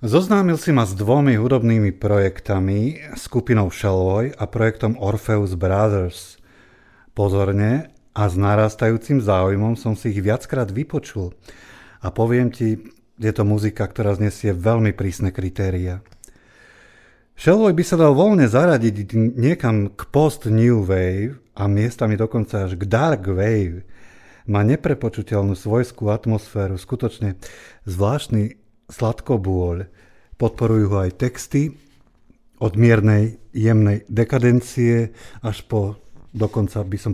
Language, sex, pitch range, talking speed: Slovak, male, 100-125 Hz, 115 wpm